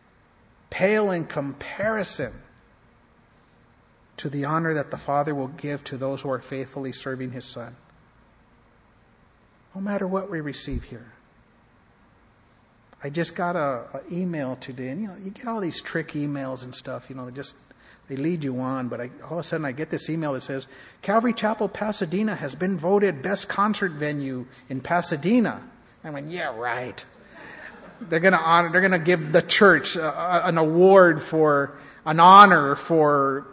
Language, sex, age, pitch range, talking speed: English, male, 50-69, 135-195 Hz, 170 wpm